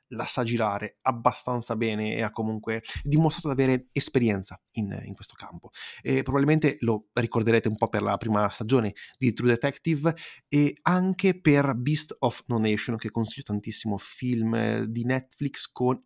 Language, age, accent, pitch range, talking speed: Italian, 30-49, native, 110-145 Hz, 155 wpm